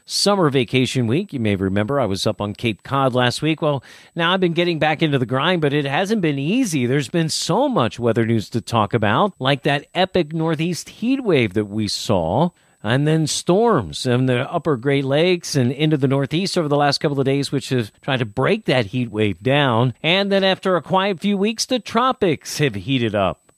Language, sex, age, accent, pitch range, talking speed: English, male, 40-59, American, 125-165 Hz, 215 wpm